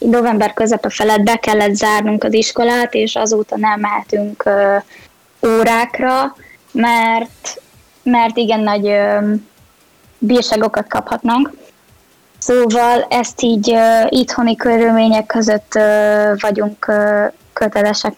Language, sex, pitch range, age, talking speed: Hungarian, female, 215-245 Hz, 10-29, 100 wpm